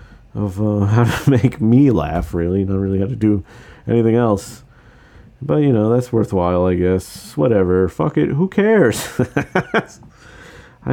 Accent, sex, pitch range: American, male, 100-130 Hz